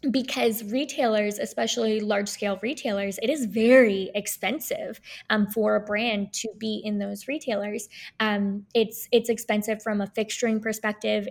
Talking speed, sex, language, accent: 140 wpm, female, English, American